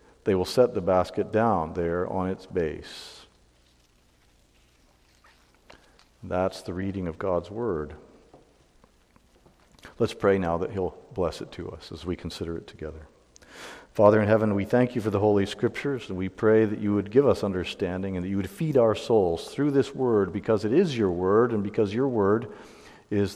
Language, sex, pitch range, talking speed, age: English, male, 90-110 Hz, 175 wpm, 50-69